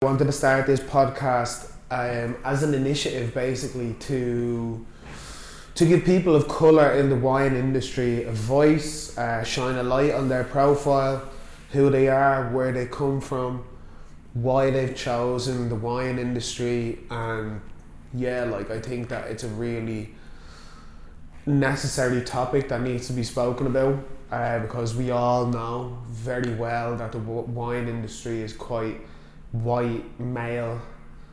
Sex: male